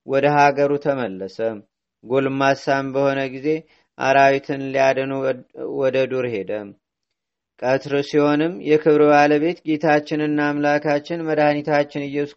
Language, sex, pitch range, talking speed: Amharic, male, 135-150 Hz, 85 wpm